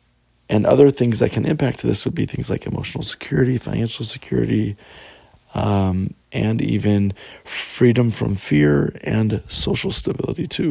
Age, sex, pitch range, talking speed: 20-39, male, 95-115 Hz, 140 wpm